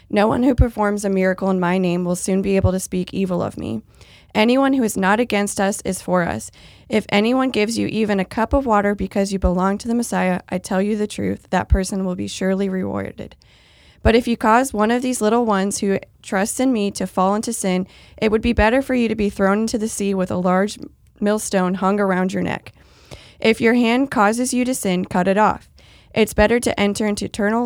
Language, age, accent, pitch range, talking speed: English, 20-39, American, 185-225 Hz, 230 wpm